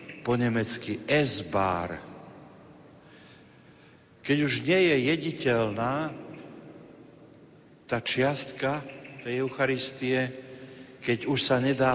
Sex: male